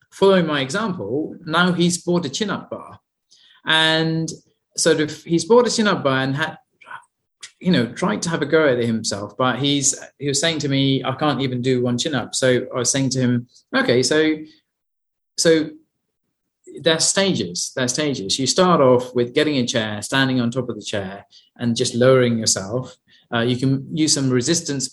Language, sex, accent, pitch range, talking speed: English, male, British, 120-155 Hz, 190 wpm